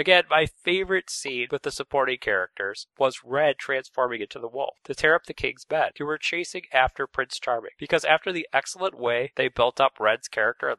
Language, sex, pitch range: English, male, 130-180 Hz